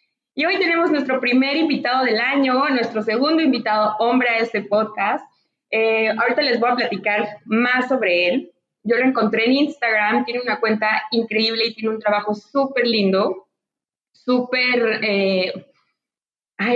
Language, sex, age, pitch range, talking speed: Spanish, female, 20-39, 210-250 Hz, 145 wpm